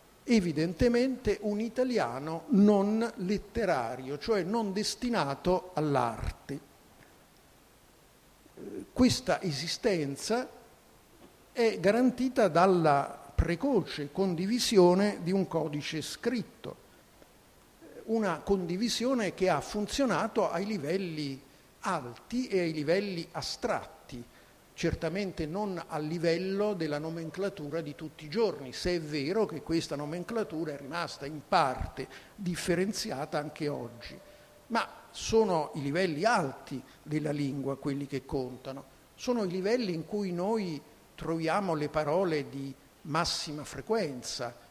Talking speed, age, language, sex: 105 wpm, 50-69, Italian, male